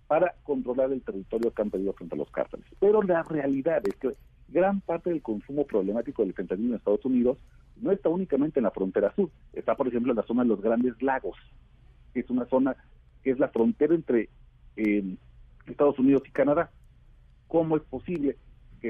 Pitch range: 110-145 Hz